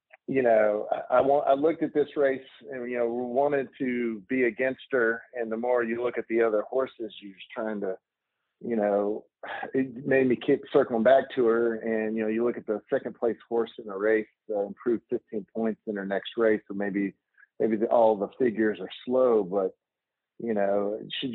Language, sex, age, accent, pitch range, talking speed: English, male, 40-59, American, 110-130 Hz, 210 wpm